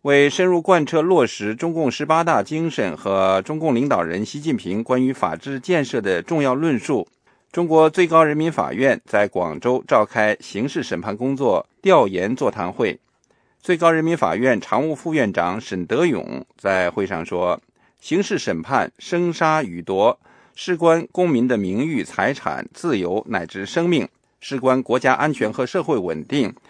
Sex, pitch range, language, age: male, 130-175 Hz, English, 50-69